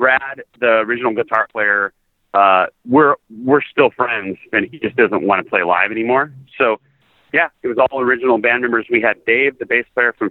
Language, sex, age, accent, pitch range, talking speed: English, male, 30-49, American, 105-135 Hz, 200 wpm